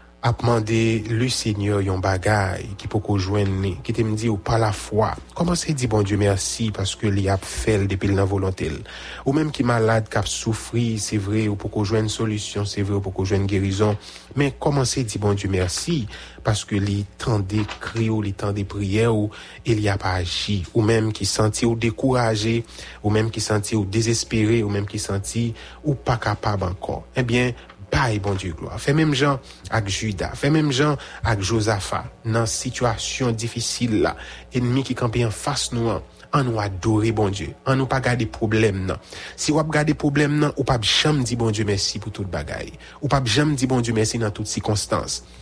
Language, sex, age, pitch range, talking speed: English, male, 30-49, 100-120 Hz, 205 wpm